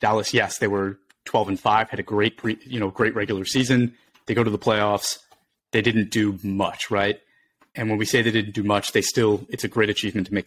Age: 30-49